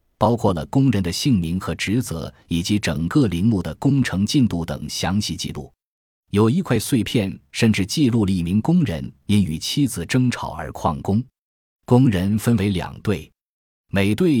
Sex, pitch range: male, 85-115 Hz